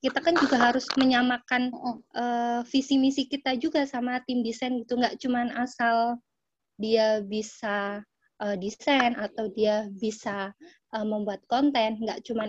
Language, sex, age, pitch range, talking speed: Indonesian, female, 20-39, 220-255 Hz, 135 wpm